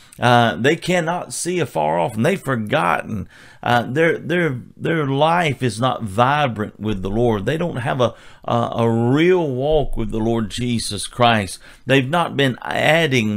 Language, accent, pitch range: English, American, 115-150 Hz